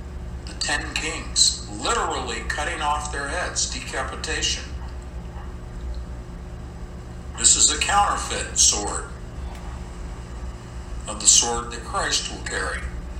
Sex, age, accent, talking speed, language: male, 60-79, American, 90 wpm, English